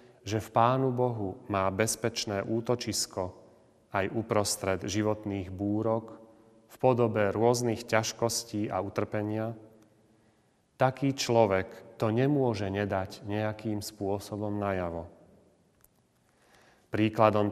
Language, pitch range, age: Slovak, 100-115 Hz, 30-49